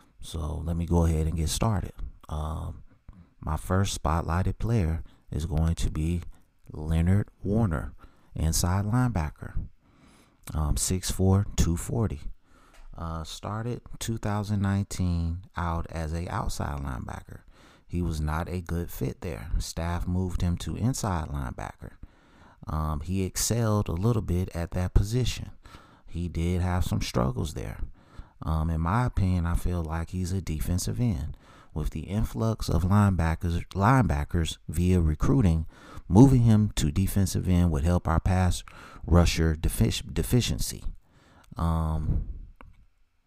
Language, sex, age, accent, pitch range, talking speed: English, male, 30-49, American, 80-95 Hz, 130 wpm